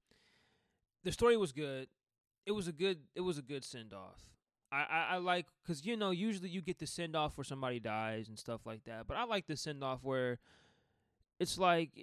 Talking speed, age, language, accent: 215 wpm, 20-39, English, American